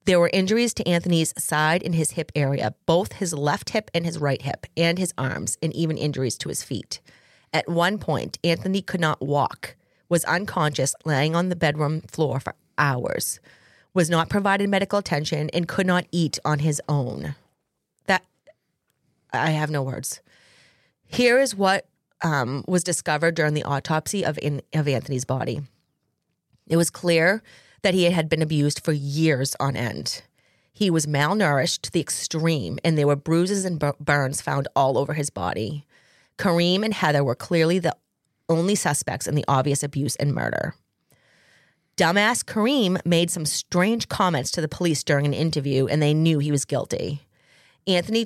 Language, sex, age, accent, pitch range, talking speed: English, female, 30-49, American, 145-175 Hz, 170 wpm